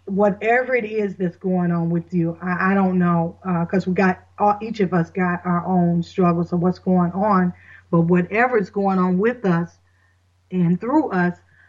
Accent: American